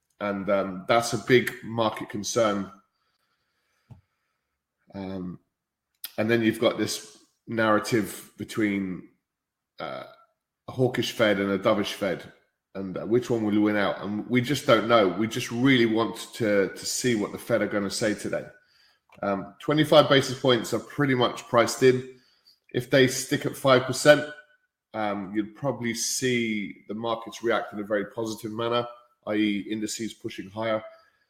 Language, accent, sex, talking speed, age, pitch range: English, British, male, 150 wpm, 20-39, 105-125 Hz